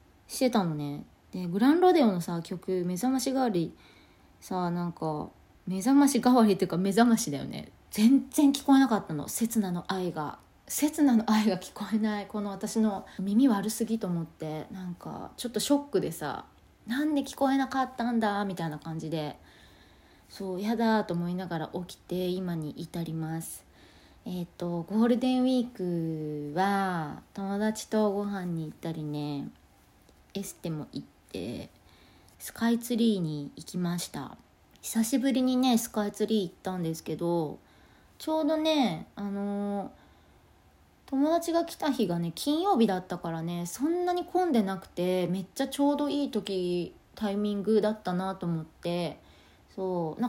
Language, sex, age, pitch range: Japanese, female, 20-39, 165-230 Hz